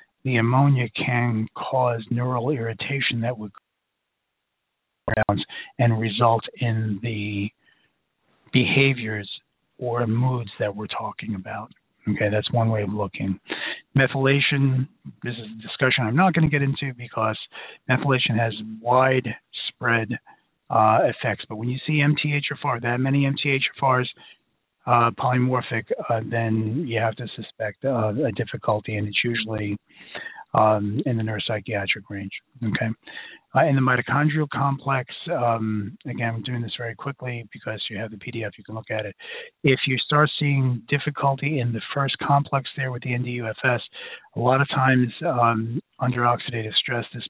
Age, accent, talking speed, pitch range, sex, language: 40-59, American, 145 wpm, 110-135 Hz, male, English